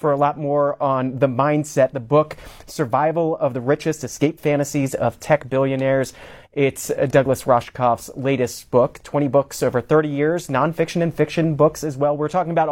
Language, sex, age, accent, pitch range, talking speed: English, male, 30-49, American, 130-155 Hz, 175 wpm